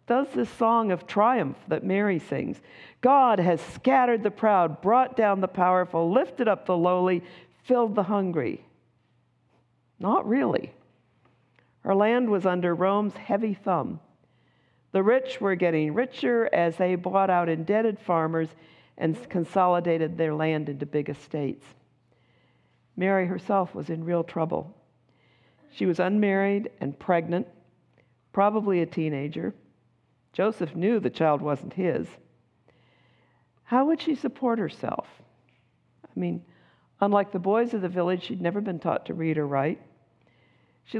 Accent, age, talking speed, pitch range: American, 50-69, 135 wpm, 165-205 Hz